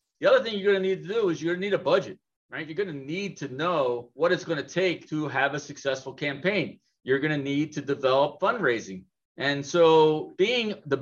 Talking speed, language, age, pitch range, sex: 240 wpm, English, 40-59, 140-195 Hz, male